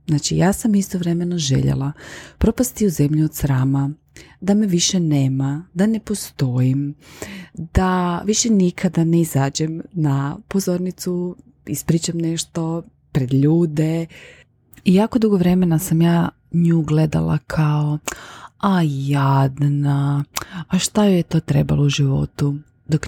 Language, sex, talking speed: Croatian, female, 125 wpm